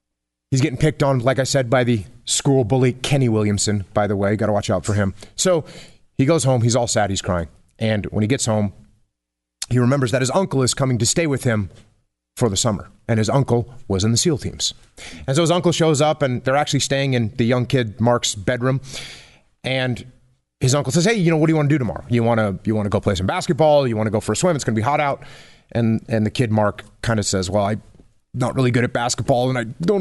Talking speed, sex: 250 wpm, male